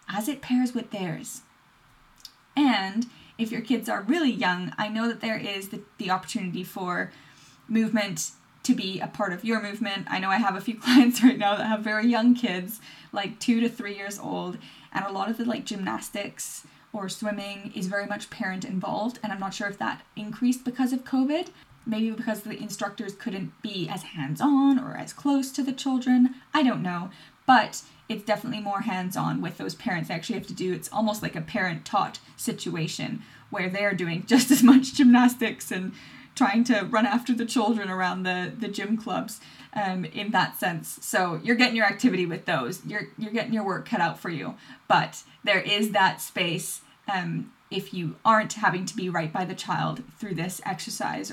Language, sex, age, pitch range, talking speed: English, female, 10-29, 190-240 Hz, 200 wpm